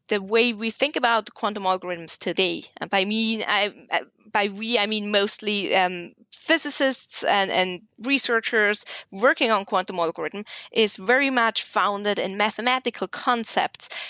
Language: English